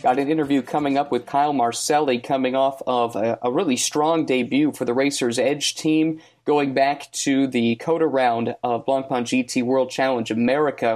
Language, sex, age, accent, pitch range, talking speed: English, male, 30-49, American, 120-155 Hz, 180 wpm